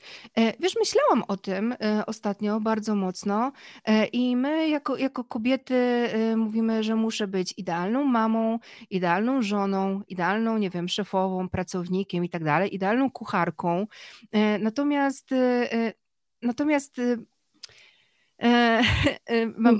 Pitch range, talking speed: 205-240 Hz, 100 wpm